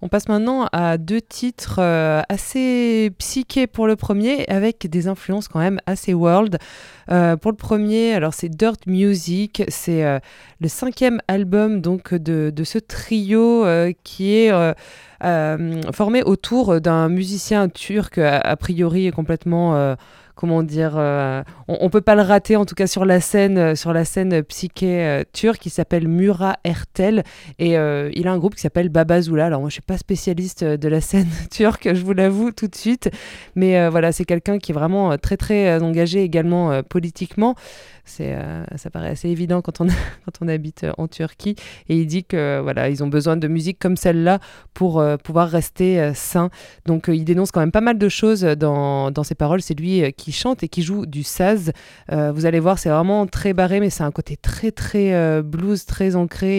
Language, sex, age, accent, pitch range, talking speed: French, female, 20-39, French, 165-200 Hz, 195 wpm